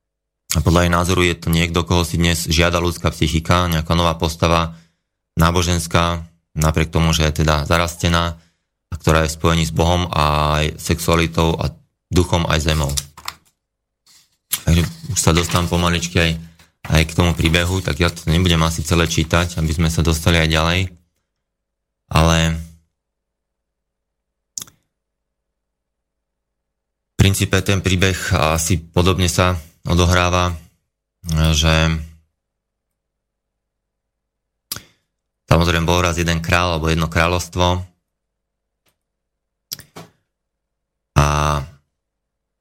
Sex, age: male, 30-49